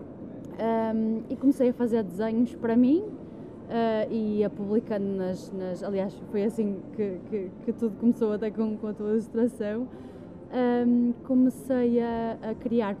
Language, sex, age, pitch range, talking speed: Portuguese, female, 20-39, 200-255 Hz, 150 wpm